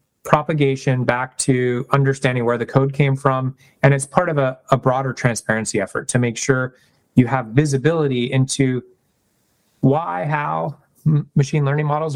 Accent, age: American, 30-49